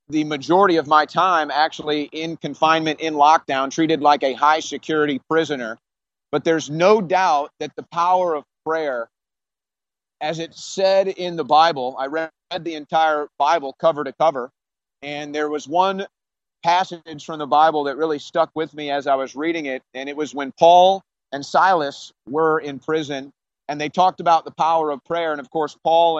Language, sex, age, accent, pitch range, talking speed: English, male, 40-59, American, 150-175 Hz, 180 wpm